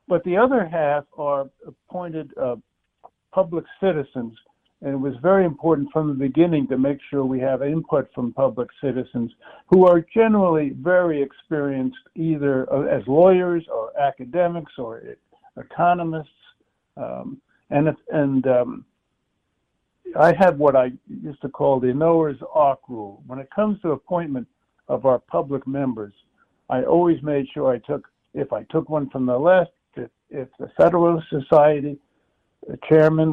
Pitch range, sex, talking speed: 130-165 Hz, male, 150 wpm